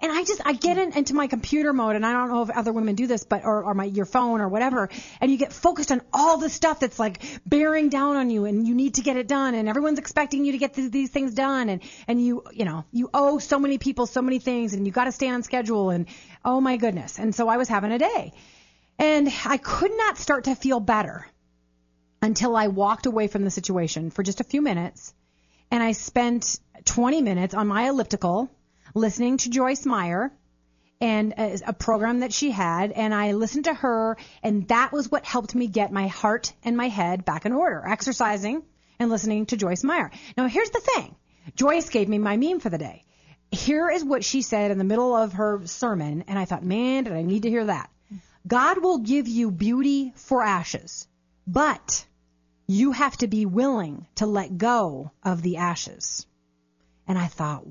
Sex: female